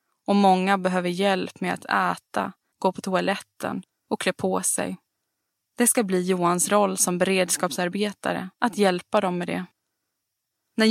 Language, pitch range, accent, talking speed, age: Swedish, 180-200 Hz, native, 150 wpm, 20-39